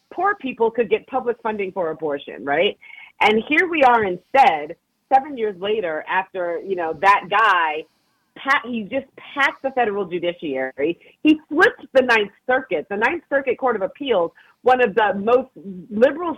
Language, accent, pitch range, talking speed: English, American, 190-265 Hz, 160 wpm